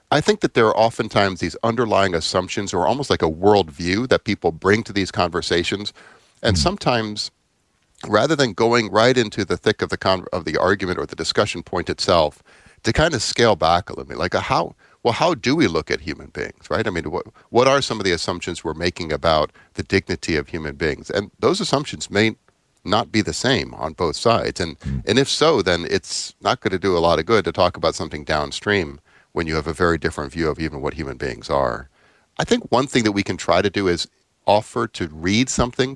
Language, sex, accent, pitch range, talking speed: English, male, American, 85-110 Hz, 225 wpm